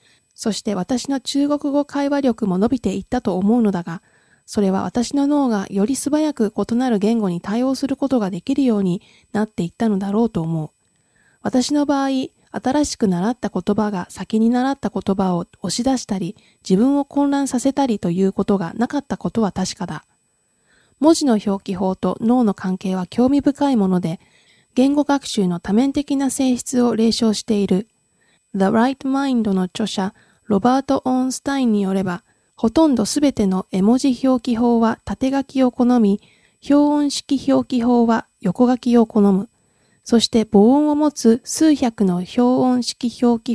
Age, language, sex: 20-39, Japanese, female